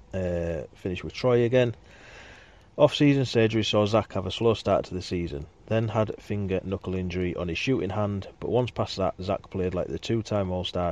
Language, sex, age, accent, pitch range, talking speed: English, male, 30-49, British, 90-105 Hz, 190 wpm